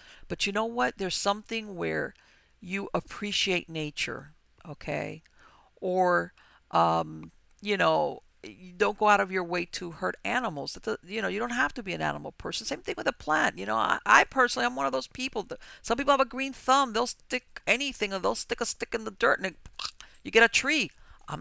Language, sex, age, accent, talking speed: English, female, 50-69, American, 200 wpm